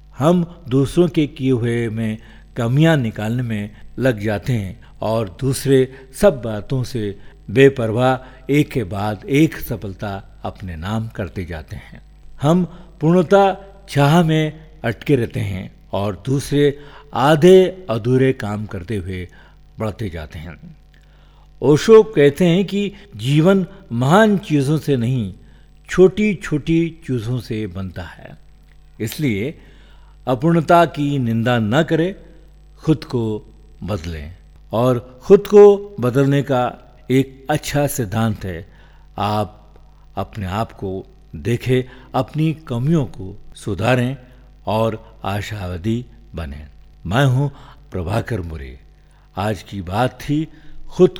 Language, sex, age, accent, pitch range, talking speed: Hindi, male, 50-69, native, 105-150 Hz, 115 wpm